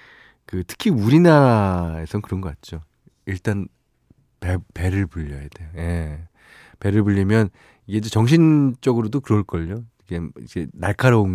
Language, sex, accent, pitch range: Korean, male, native, 90-125 Hz